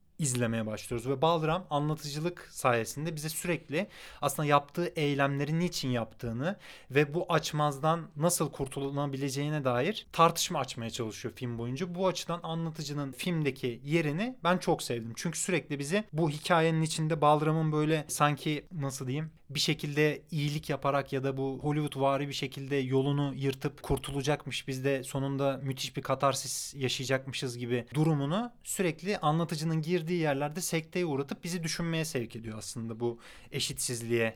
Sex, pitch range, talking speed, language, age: male, 135-170 Hz, 140 wpm, Turkish, 30-49